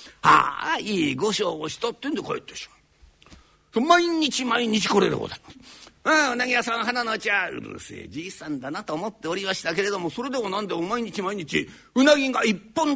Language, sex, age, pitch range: Japanese, male, 50-69, 190-250 Hz